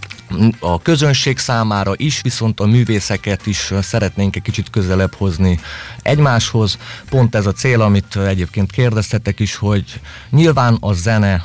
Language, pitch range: Hungarian, 95-115 Hz